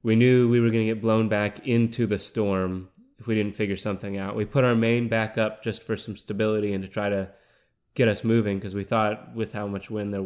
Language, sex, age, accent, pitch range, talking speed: English, male, 20-39, American, 95-110 Hz, 250 wpm